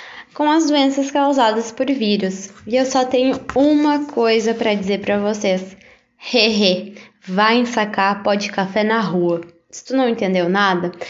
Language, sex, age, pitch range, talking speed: Portuguese, female, 10-29, 195-240 Hz, 155 wpm